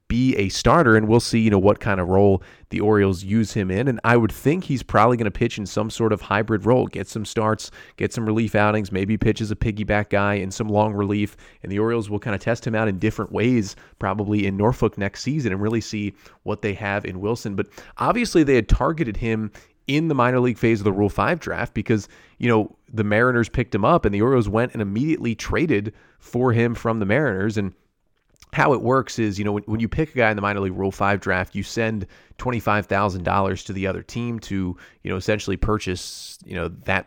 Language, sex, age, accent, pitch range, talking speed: English, male, 30-49, American, 100-115 Hz, 235 wpm